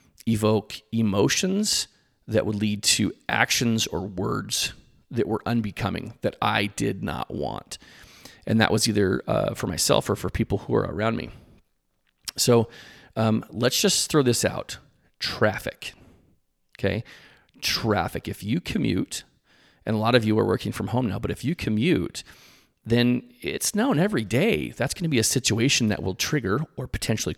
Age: 40-59